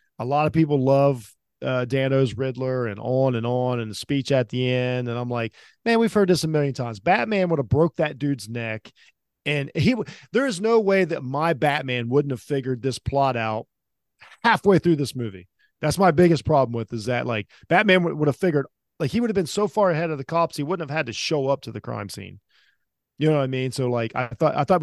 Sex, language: male, English